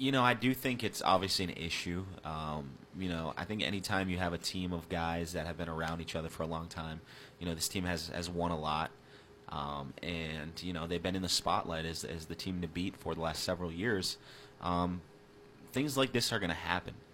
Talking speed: 240 wpm